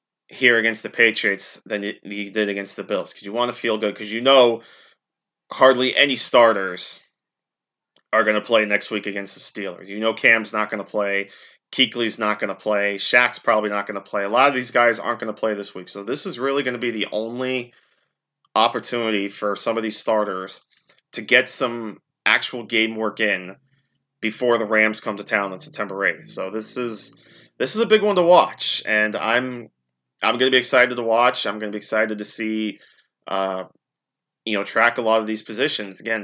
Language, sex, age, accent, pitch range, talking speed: English, male, 30-49, American, 105-125 Hz, 210 wpm